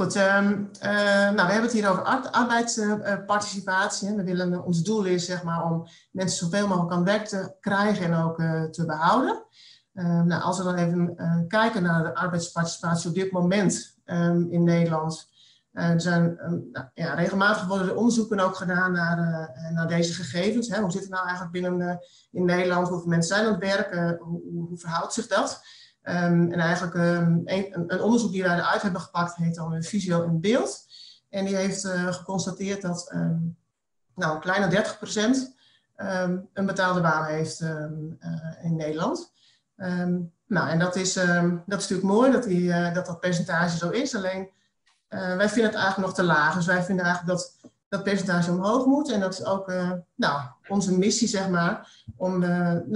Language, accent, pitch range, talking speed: Dutch, Dutch, 170-200 Hz, 195 wpm